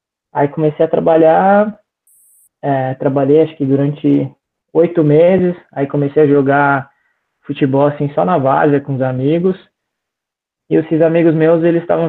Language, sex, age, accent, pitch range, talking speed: Portuguese, male, 20-39, Brazilian, 130-160 Hz, 140 wpm